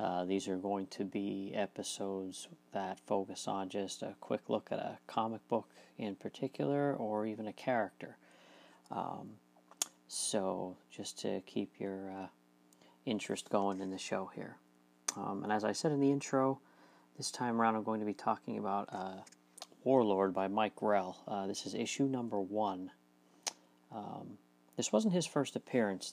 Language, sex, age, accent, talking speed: English, male, 40-59, American, 165 wpm